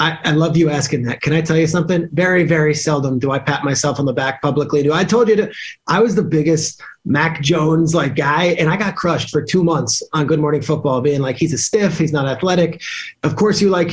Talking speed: 255 wpm